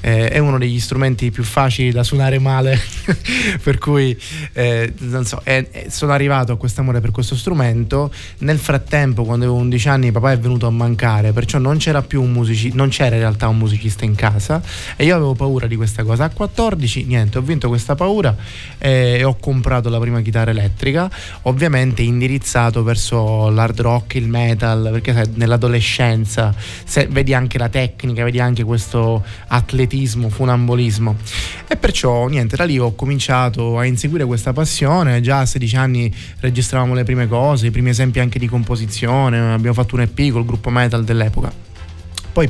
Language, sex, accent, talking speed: Italian, male, native, 175 wpm